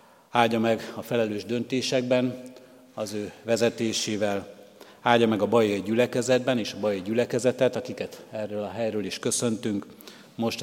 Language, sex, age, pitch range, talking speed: Hungarian, male, 50-69, 100-115 Hz, 135 wpm